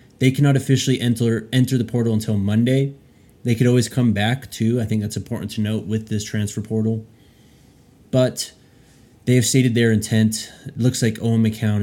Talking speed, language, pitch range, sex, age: 185 wpm, English, 105-120 Hz, male, 20-39